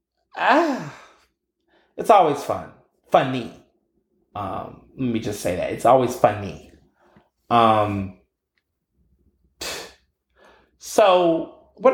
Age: 30-49